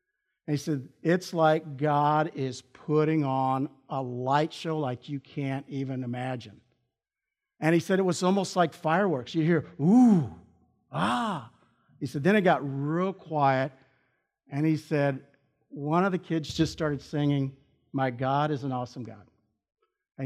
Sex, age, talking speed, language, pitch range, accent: male, 50-69, 155 wpm, English, 130-165 Hz, American